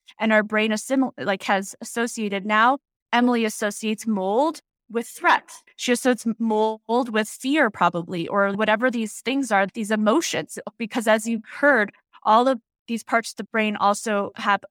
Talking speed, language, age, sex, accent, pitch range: 160 wpm, English, 20-39, female, American, 210-245 Hz